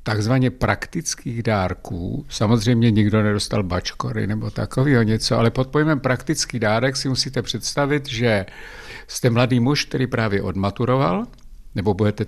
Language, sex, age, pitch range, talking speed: Czech, male, 60-79, 105-140 Hz, 125 wpm